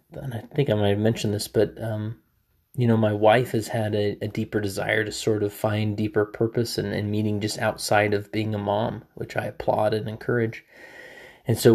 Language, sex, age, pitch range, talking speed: English, male, 20-39, 105-115 Hz, 215 wpm